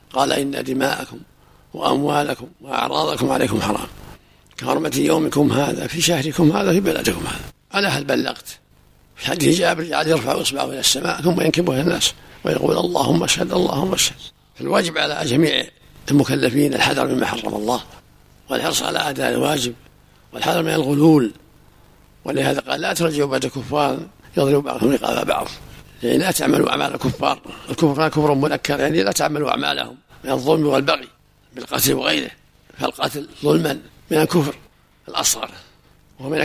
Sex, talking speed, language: male, 140 wpm, Arabic